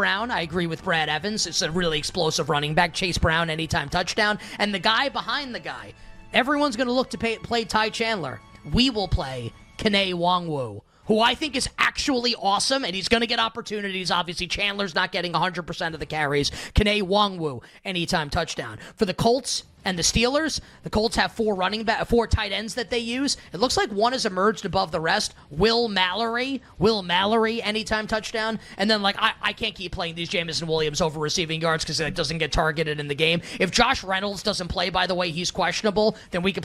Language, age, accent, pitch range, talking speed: English, 20-39, American, 165-220 Hz, 210 wpm